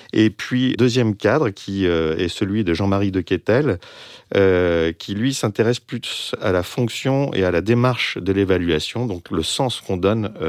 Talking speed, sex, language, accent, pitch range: 165 wpm, male, French, French, 85-110 Hz